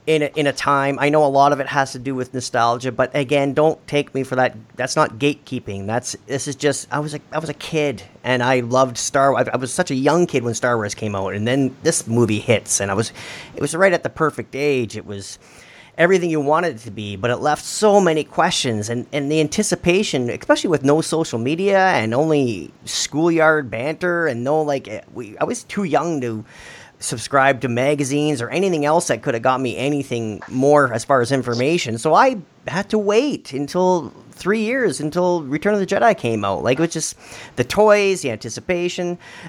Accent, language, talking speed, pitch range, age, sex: American, English, 215 wpm, 120-165 Hz, 40-59, male